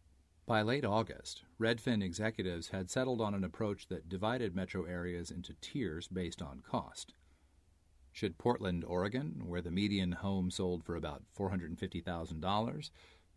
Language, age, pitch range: English, 40-59, 85-110 Hz